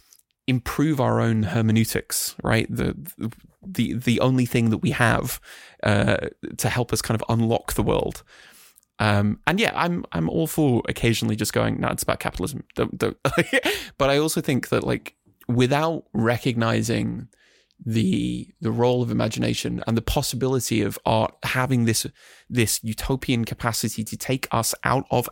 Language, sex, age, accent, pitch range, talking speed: English, male, 20-39, British, 110-125 Hz, 155 wpm